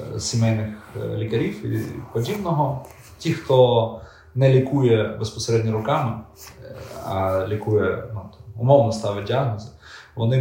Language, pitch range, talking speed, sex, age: Ukrainian, 100-120 Hz, 105 wpm, male, 30-49